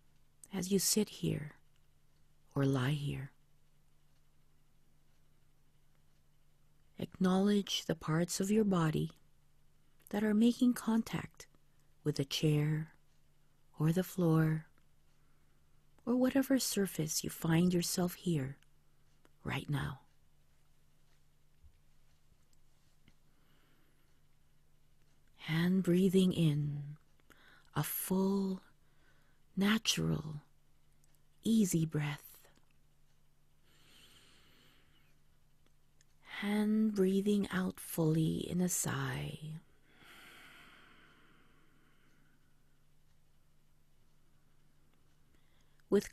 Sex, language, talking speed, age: female, English, 60 wpm, 40-59